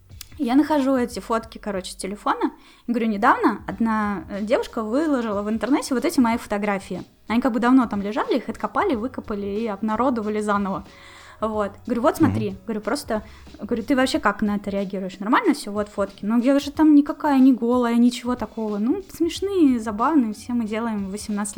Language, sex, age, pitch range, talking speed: Russian, female, 10-29, 210-270 Hz, 170 wpm